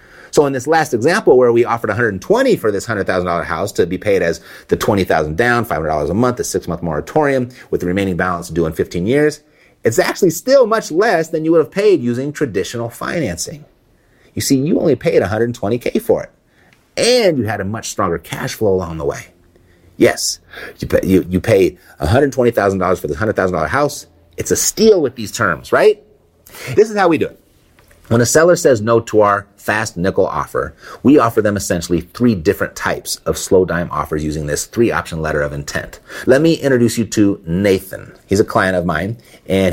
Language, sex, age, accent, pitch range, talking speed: English, male, 30-49, American, 90-130 Hz, 200 wpm